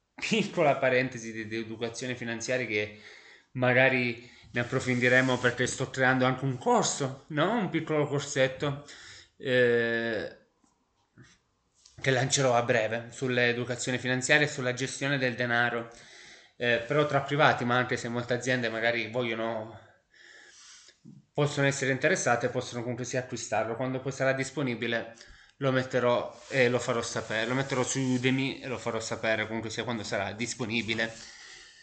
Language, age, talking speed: Italian, 20-39, 140 wpm